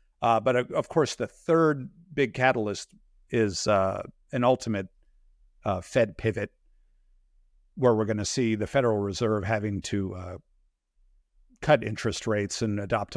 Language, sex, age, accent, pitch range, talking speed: English, male, 50-69, American, 105-125 Hz, 140 wpm